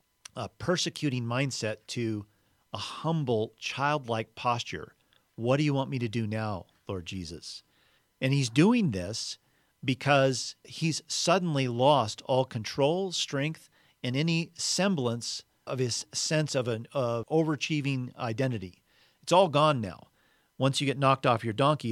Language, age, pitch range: English, 40-59, 110-145 Hz